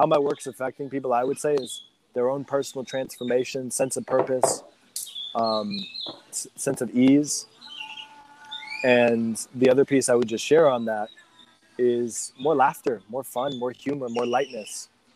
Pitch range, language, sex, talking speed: 120-140 Hz, English, male, 155 wpm